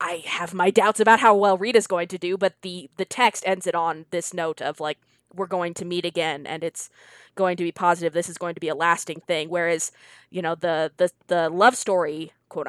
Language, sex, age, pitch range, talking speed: English, female, 20-39, 165-195 Hz, 235 wpm